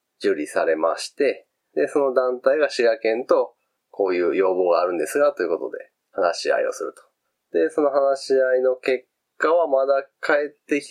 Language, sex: Japanese, male